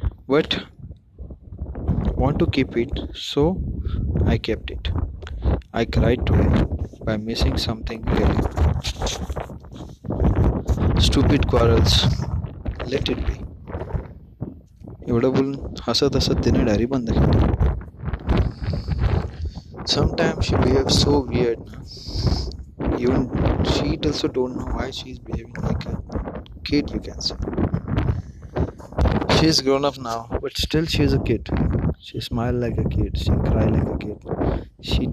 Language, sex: Marathi, male